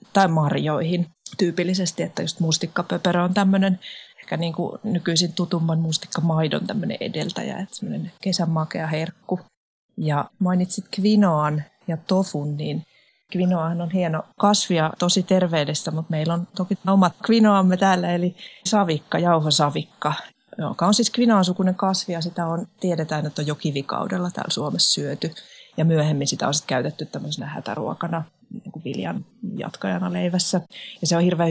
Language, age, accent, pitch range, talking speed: Finnish, 30-49, native, 155-190 Hz, 135 wpm